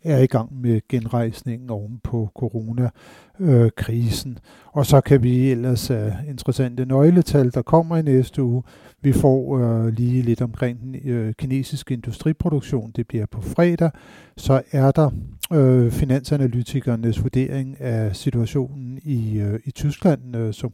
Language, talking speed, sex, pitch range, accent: Danish, 150 wpm, male, 115-140 Hz, native